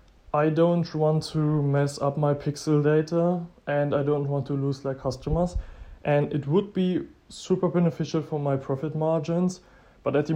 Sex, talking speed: male, 175 wpm